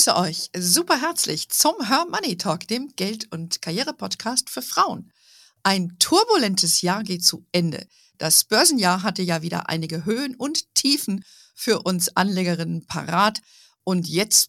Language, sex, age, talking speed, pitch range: German, female, 50-69, 150 wpm, 175-240 Hz